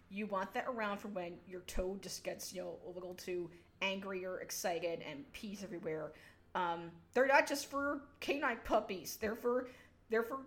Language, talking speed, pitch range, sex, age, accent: English, 185 wpm, 195-245 Hz, female, 30-49, American